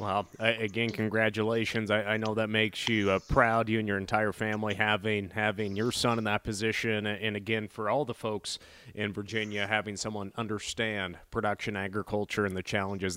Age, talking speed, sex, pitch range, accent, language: 30-49, 180 wpm, male, 105-125 Hz, American, English